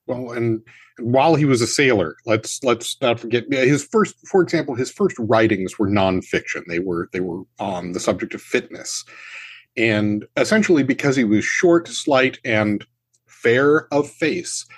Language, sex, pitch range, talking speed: English, male, 110-155 Hz, 165 wpm